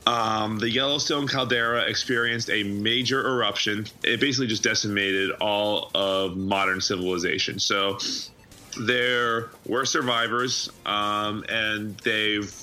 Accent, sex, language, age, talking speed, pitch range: American, male, English, 30-49, 110 wpm, 95-115 Hz